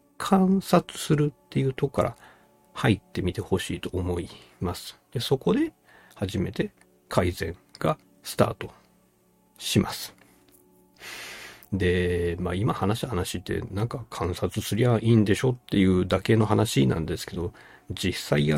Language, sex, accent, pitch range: Japanese, male, native, 90-120 Hz